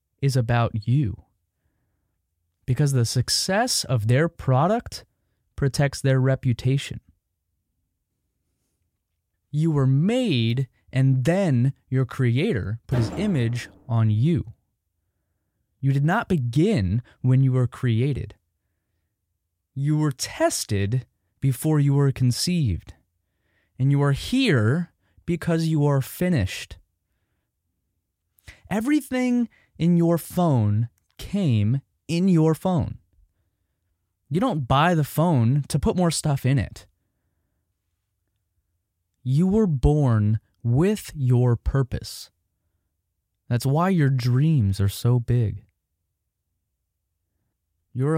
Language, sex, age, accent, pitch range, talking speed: English, male, 20-39, American, 95-140 Hz, 100 wpm